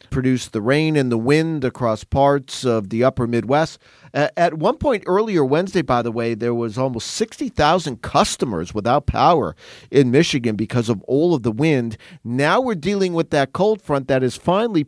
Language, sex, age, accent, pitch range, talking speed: English, male, 40-59, American, 120-160 Hz, 180 wpm